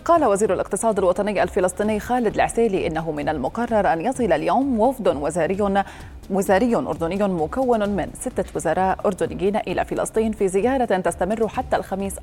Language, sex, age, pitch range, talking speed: Arabic, female, 30-49, 190-250 Hz, 140 wpm